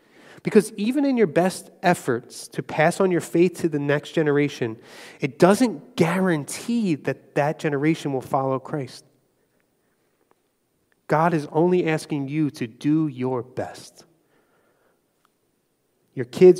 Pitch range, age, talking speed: 135-170 Hz, 30-49, 125 wpm